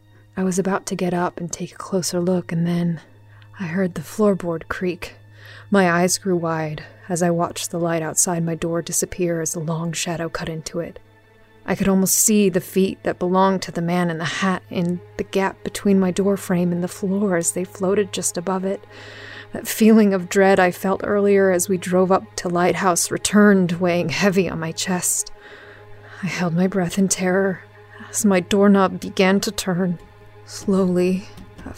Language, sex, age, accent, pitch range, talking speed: English, female, 30-49, American, 170-195 Hz, 190 wpm